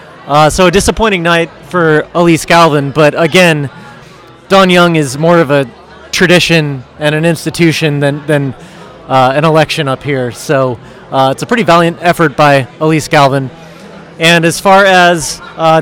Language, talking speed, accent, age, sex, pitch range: English, 160 wpm, American, 30-49, male, 145-170 Hz